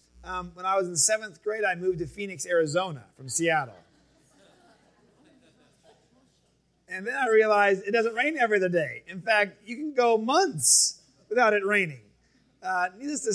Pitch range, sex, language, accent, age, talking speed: 150-205 Hz, male, English, American, 30-49, 160 wpm